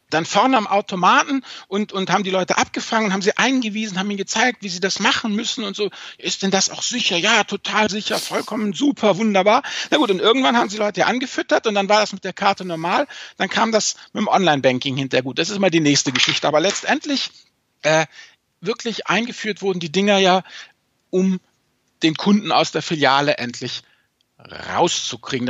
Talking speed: 195 wpm